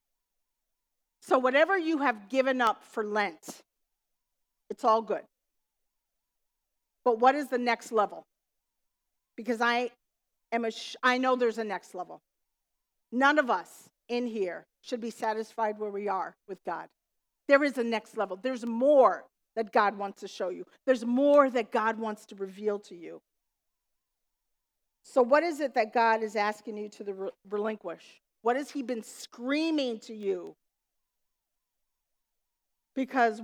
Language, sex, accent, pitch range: English, female, American, 200-250 Hz